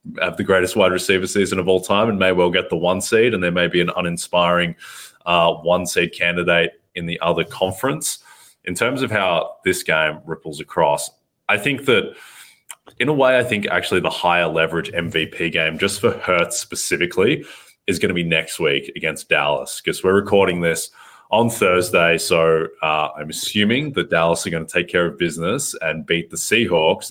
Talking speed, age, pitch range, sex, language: 195 wpm, 20-39, 80-95 Hz, male, English